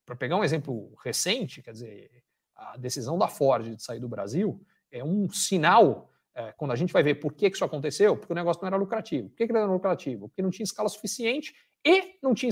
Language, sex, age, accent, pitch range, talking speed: Portuguese, male, 50-69, Brazilian, 150-230 Hz, 235 wpm